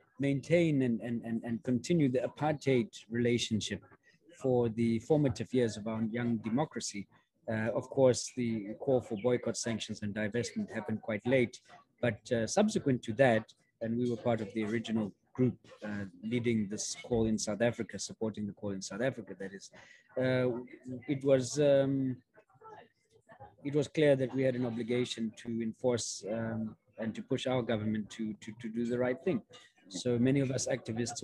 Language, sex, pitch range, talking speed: English, male, 110-130 Hz, 170 wpm